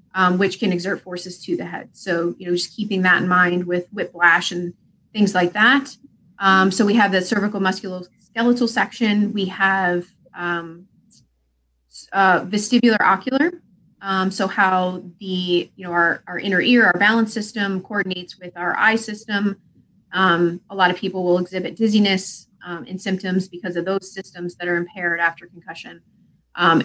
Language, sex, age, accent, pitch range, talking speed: English, female, 30-49, American, 180-205 Hz, 170 wpm